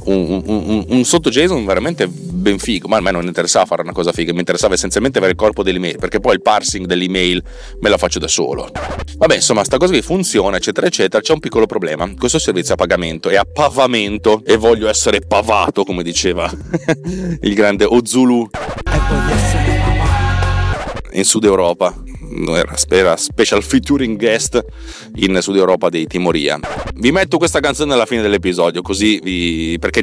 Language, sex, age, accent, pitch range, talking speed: Italian, male, 30-49, native, 90-125 Hz, 170 wpm